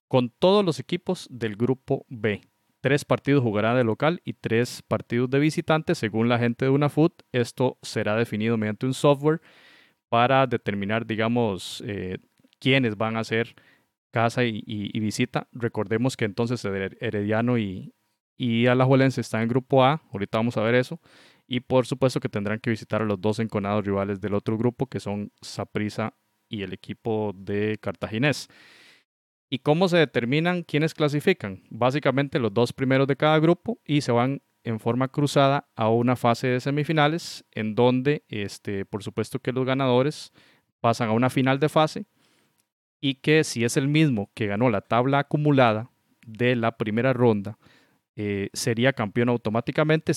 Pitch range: 110-140 Hz